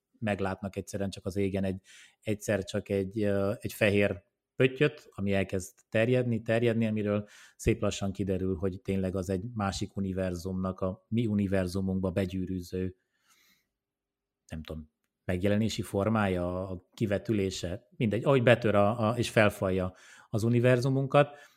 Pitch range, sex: 95-115 Hz, male